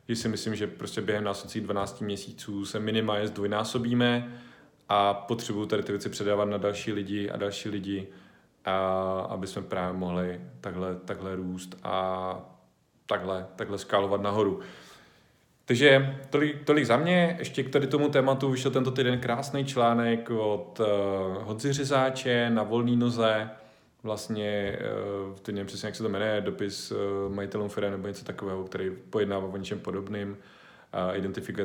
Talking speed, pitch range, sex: 150 wpm, 95-110 Hz, male